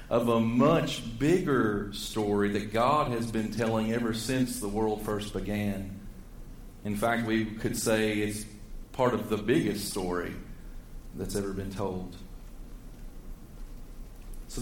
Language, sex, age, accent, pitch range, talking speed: English, male, 40-59, American, 105-130 Hz, 130 wpm